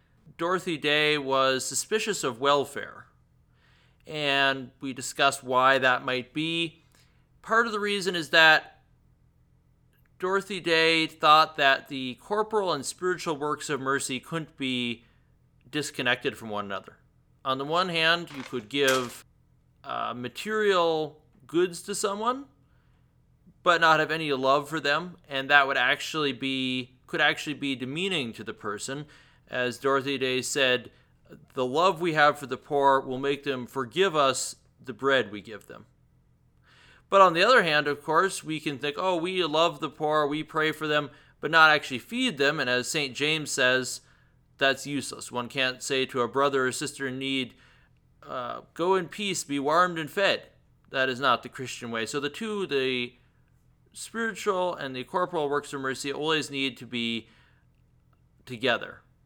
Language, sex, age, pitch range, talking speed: English, male, 30-49, 130-160 Hz, 160 wpm